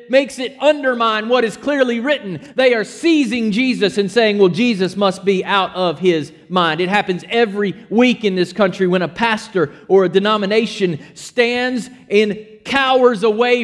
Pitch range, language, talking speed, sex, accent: 200-270 Hz, English, 165 wpm, male, American